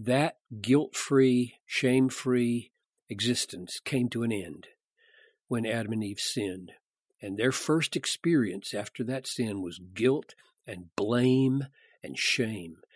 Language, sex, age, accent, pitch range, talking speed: English, male, 50-69, American, 105-135 Hz, 120 wpm